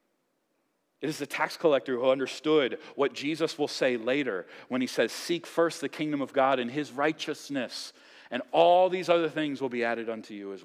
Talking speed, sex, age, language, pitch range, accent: 195 wpm, male, 40-59, English, 120-155 Hz, American